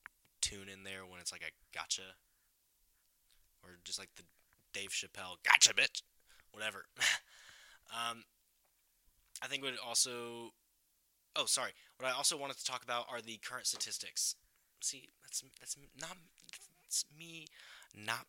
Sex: male